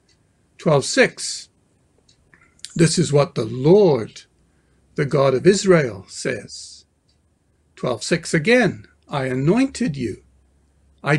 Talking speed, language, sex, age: 85 wpm, English, male, 60-79